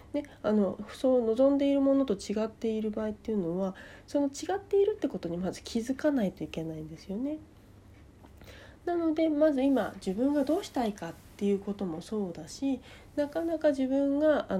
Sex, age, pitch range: female, 40-59, 175-275 Hz